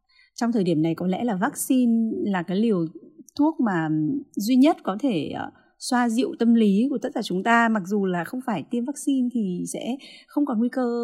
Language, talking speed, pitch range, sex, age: Vietnamese, 210 wpm, 170-240 Hz, female, 20-39